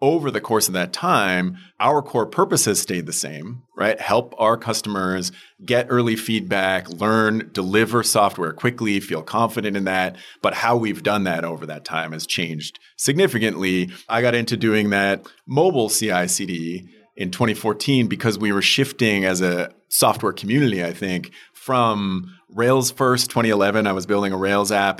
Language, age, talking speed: English, 40-59, 165 wpm